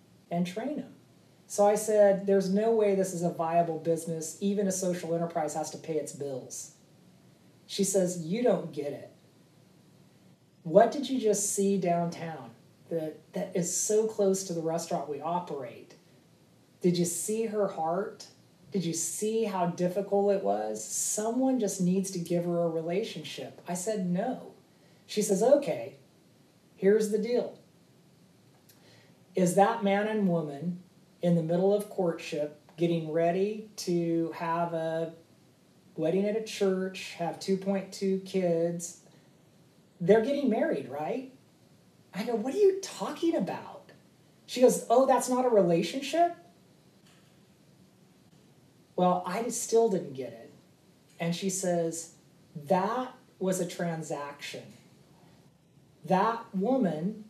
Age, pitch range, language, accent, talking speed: 40-59, 165-205 Hz, English, American, 135 wpm